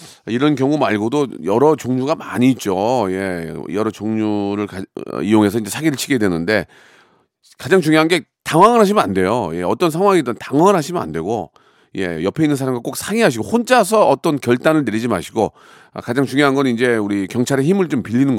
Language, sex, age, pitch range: Korean, male, 40-59, 105-140 Hz